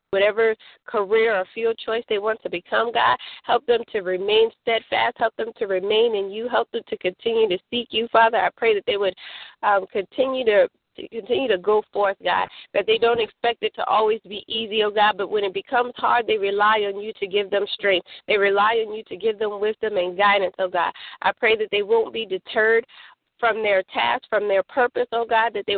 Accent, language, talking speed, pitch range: American, English, 220 wpm, 205-280 Hz